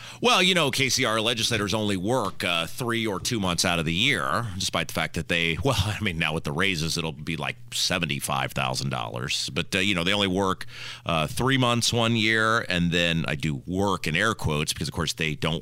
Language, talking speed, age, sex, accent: English, 220 wpm, 40-59, male, American